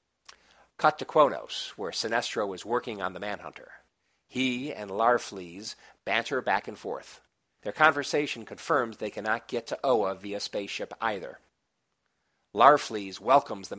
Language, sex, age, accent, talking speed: English, male, 50-69, American, 135 wpm